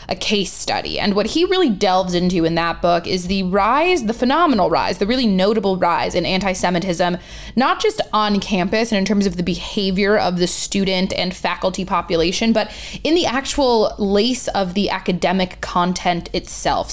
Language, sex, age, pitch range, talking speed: English, female, 20-39, 180-210 Hz, 175 wpm